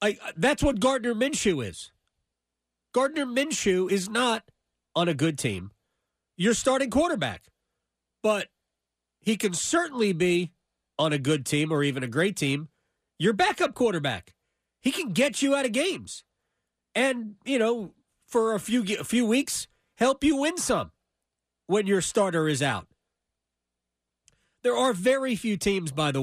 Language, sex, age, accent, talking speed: English, male, 40-59, American, 150 wpm